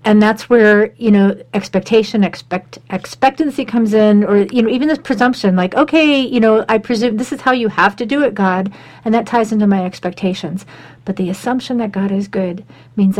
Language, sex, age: English, female, 50-69